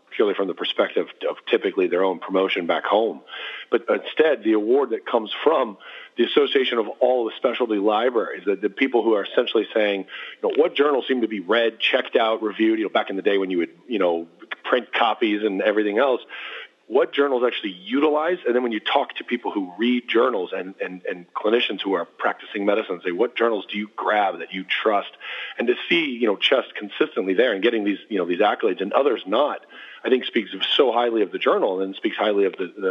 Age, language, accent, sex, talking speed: 40-59, English, American, male, 220 wpm